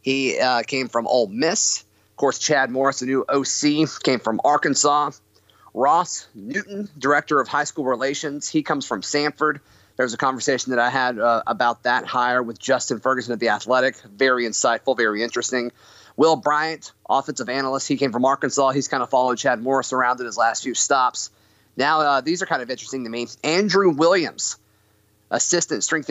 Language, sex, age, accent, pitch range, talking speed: English, male, 30-49, American, 120-145 Hz, 185 wpm